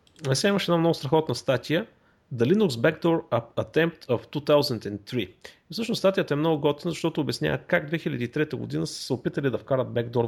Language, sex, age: Bulgarian, male, 30-49